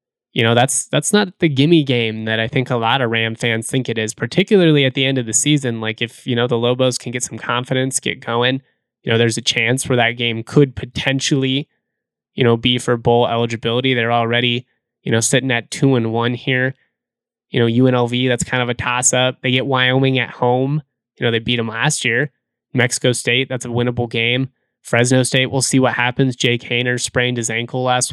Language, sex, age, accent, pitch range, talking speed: English, male, 20-39, American, 115-130 Hz, 220 wpm